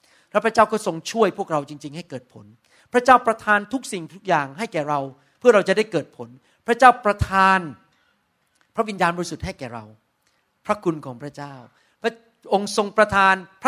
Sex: male